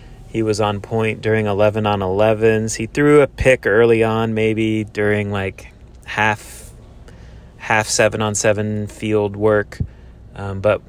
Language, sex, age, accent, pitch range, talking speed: English, male, 30-49, American, 100-115 Hz, 130 wpm